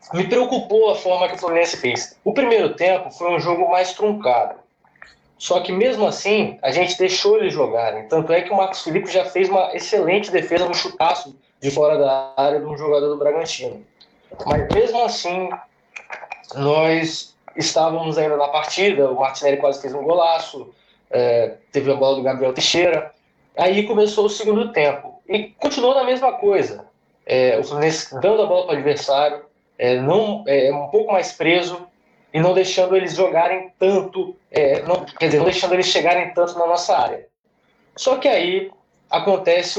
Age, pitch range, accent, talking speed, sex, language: 20-39, 145-195 Hz, Brazilian, 175 wpm, male, Portuguese